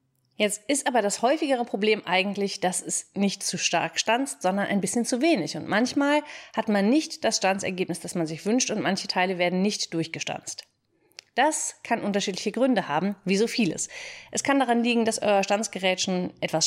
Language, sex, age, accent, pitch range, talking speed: German, female, 30-49, German, 190-240 Hz, 185 wpm